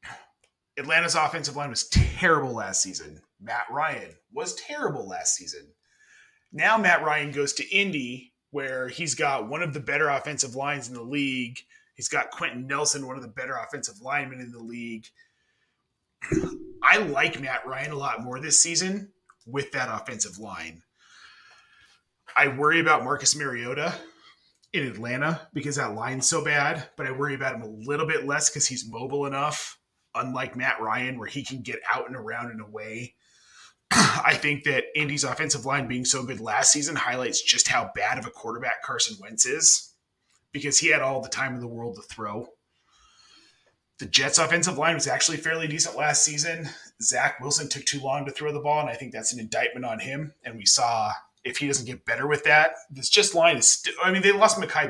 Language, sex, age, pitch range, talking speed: English, male, 30-49, 130-160 Hz, 190 wpm